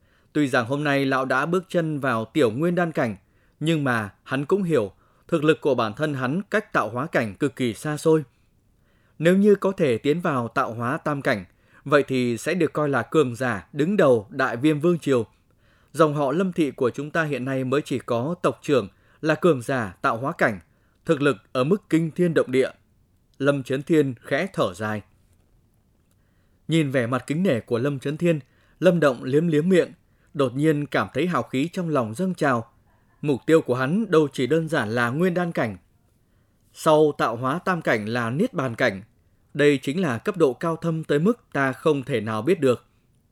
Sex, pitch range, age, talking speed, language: male, 115-160 Hz, 20-39, 210 wpm, Vietnamese